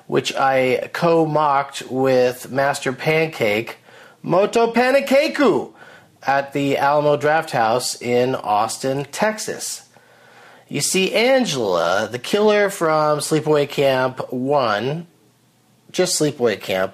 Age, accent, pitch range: 30-49, American, 135-180 Hz